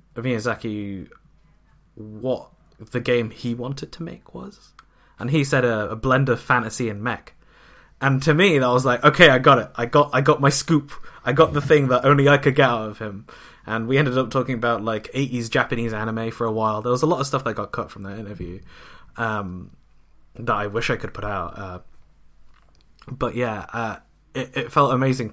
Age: 20-39